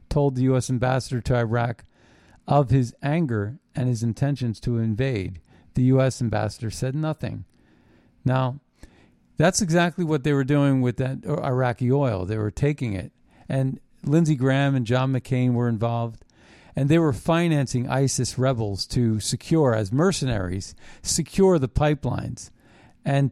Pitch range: 120-150 Hz